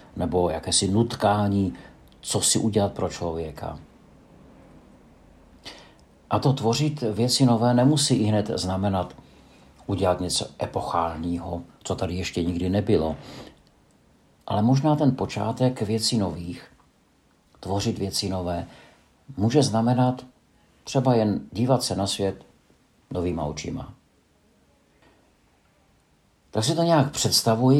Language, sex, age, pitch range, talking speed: Czech, male, 50-69, 90-115 Hz, 105 wpm